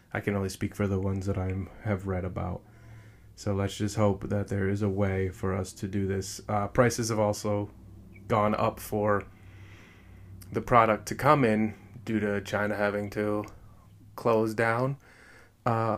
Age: 20-39